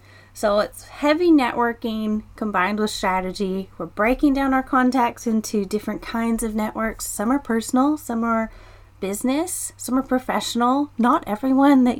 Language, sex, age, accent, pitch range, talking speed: English, female, 30-49, American, 200-255 Hz, 145 wpm